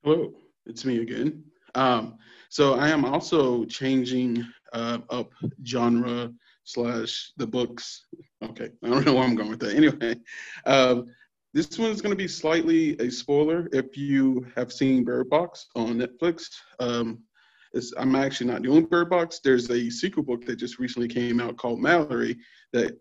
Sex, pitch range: male, 120-140 Hz